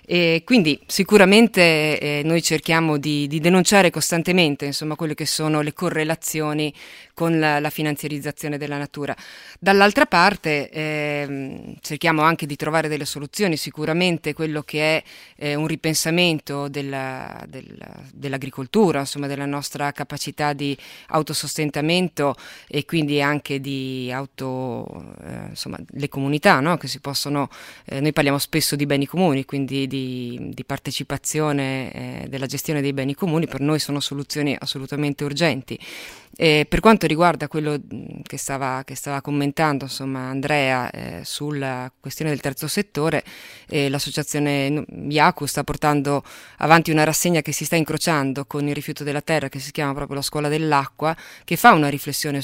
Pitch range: 140-155 Hz